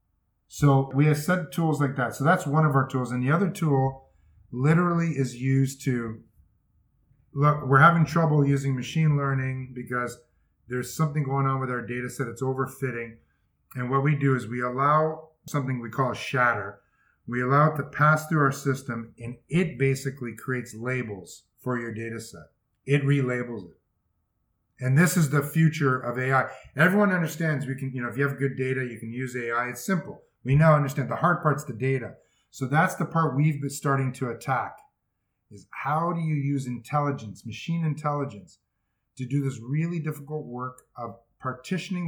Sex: male